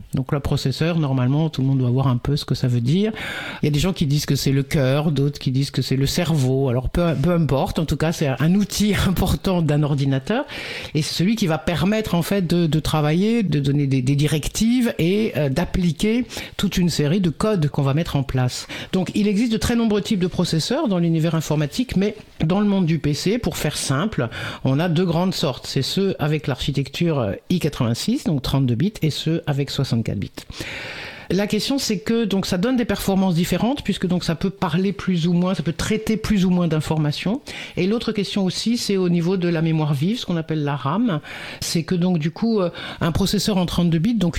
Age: 50-69